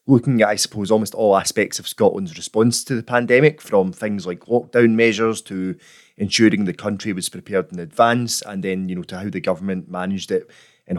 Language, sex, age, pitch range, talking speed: English, male, 20-39, 95-115 Hz, 200 wpm